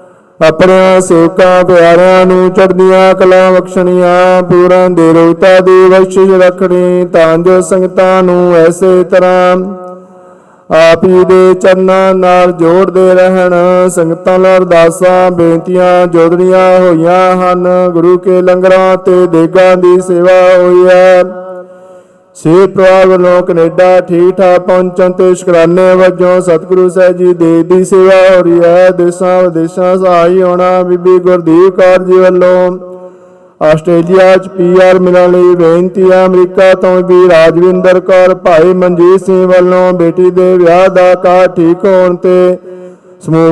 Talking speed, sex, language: 110 wpm, male, Punjabi